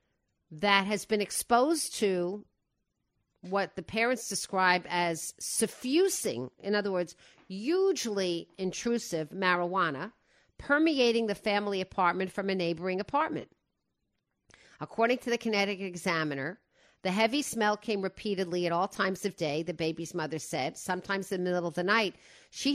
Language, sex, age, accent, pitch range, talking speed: English, female, 50-69, American, 185-235 Hz, 135 wpm